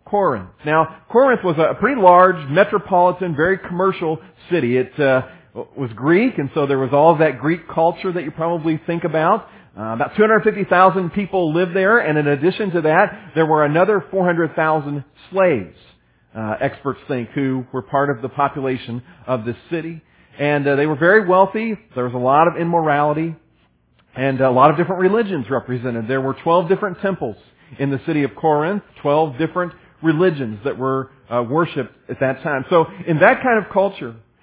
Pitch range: 135-180 Hz